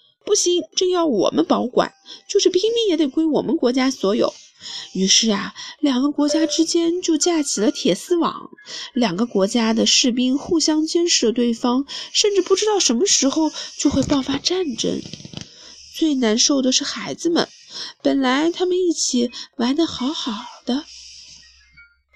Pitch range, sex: 250-345 Hz, female